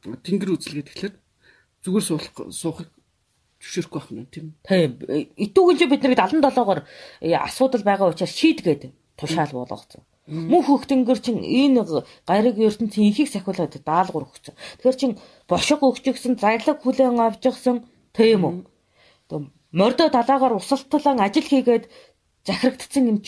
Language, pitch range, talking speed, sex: English, 160-255 Hz, 95 wpm, female